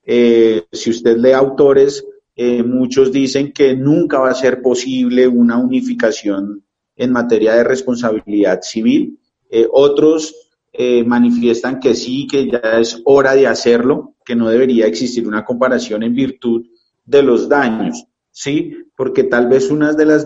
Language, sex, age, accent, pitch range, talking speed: Spanish, male, 40-59, Colombian, 120-150 Hz, 150 wpm